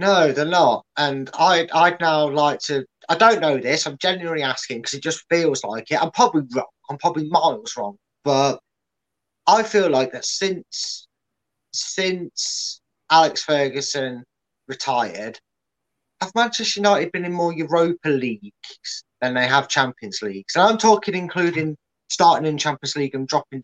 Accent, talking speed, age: British, 155 wpm, 20-39